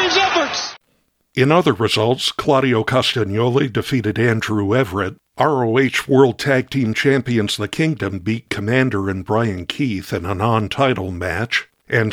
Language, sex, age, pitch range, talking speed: English, male, 60-79, 110-135 Hz, 125 wpm